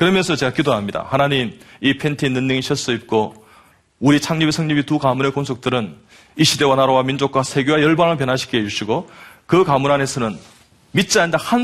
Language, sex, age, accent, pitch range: Korean, male, 30-49, native, 125-165 Hz